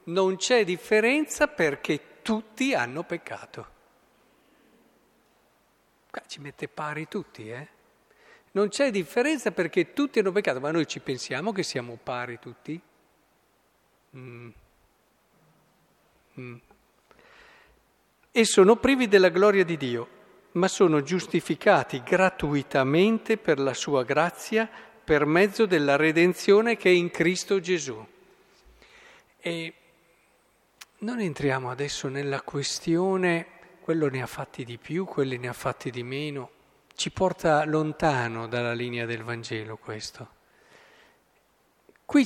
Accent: native